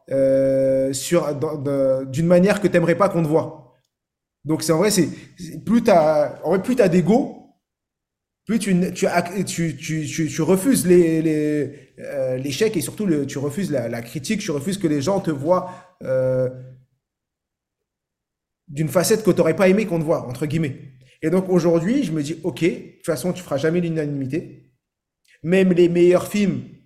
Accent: French